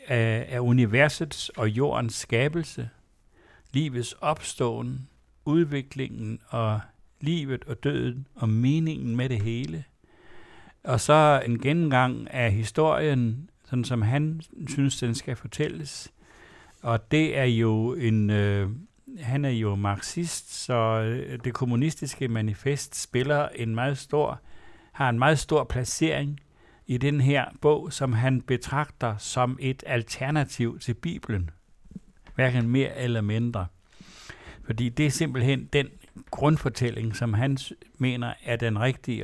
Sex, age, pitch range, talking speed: male, 60-79, 115-140 Hz, 125 wpm